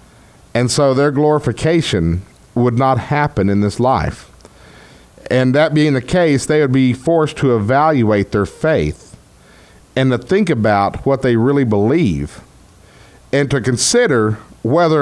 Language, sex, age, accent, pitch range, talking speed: English, male, 50-69, American, 110-145 Hz, 140 wpm